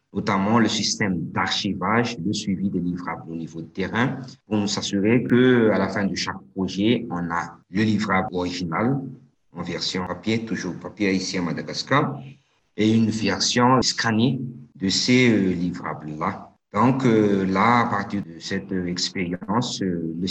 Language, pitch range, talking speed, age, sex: English, 90-110 Hz, 160 wpm, 50-69, male